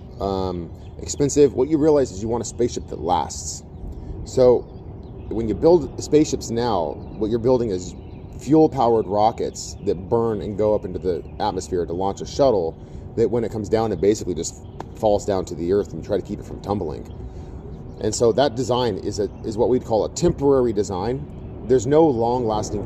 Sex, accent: male, American